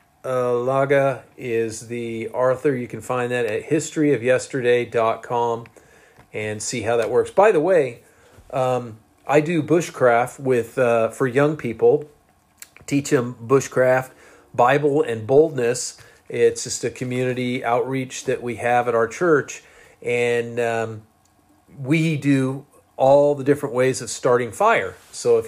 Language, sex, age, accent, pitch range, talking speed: English, male, 40-59, American, 120-145 Hz, 135 wpm